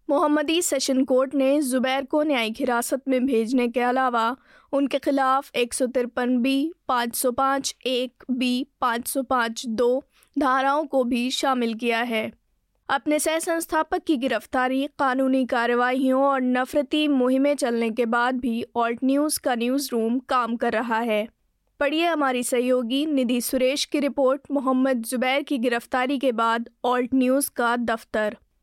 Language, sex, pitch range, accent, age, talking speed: Hindi, female, 245-280 Hz, native, 20-39, 145 wpm